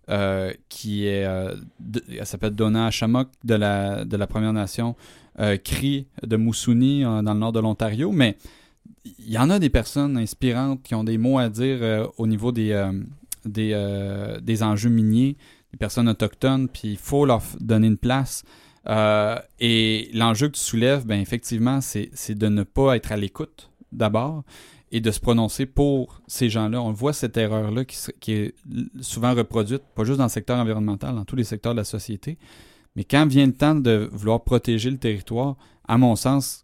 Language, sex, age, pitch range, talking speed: French, male, 30-49, 105-125 Hz, 190 wpm